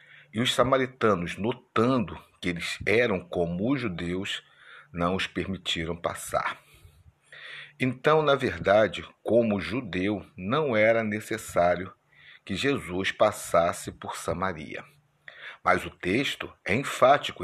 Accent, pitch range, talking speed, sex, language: Brazilian, 85-110 Hz, 110 wpm, male, Portuguese